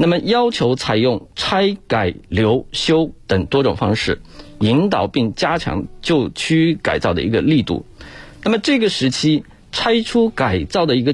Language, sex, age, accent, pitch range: Chinese, male, 50-69, native, 115-175 Hz